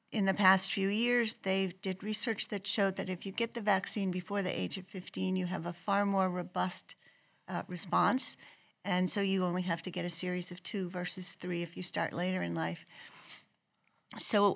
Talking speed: 200 wpm